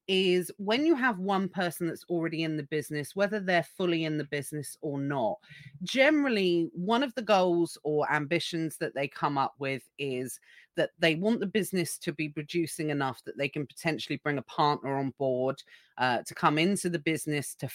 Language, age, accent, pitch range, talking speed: English, 40-59, British, 150-195 Hz, 195 wpm